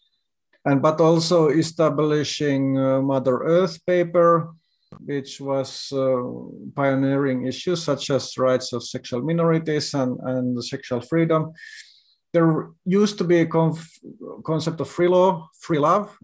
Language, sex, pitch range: Finnish, male, 130-160 Hz